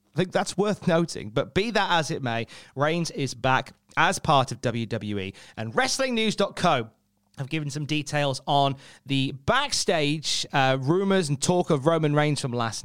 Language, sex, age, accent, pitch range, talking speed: English, male, 30-49, British, 125-175 Hz, 170 wpm